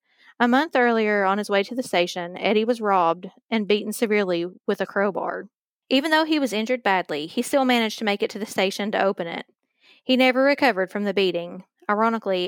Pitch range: 190-235 Hz